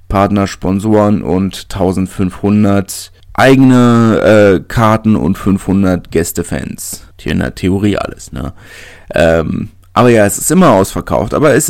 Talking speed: 130 wpm